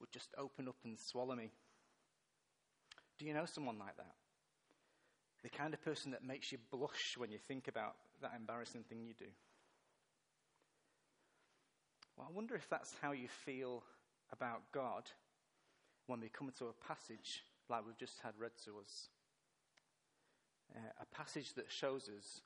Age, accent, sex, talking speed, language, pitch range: 40-59, British, male, 160 wpm, English, 125-150 Hz